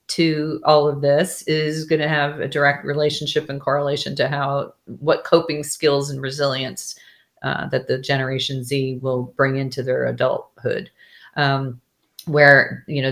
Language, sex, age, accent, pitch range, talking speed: English, female, 40-59, American, 140-155 Hz, 155 wpm